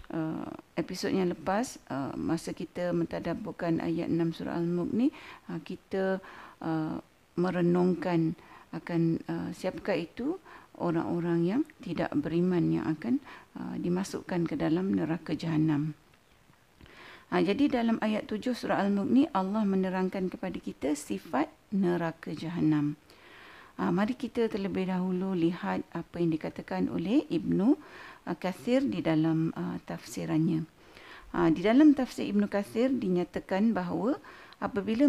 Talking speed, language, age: 120 wpm, Malay, 50-69